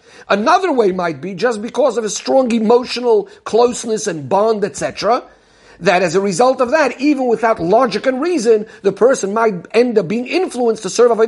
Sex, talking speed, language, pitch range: male, 190 wpm, English, 190-240 Hz